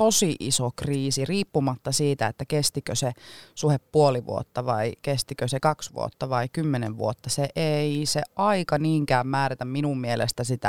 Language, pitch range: Finnish, 130-165 Hz